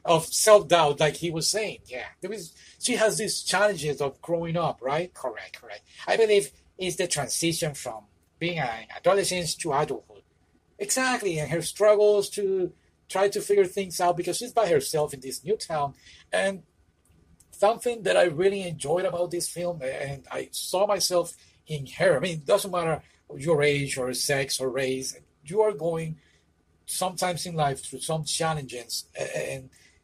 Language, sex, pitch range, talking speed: English, male, 125-185 Hz, 170 wpm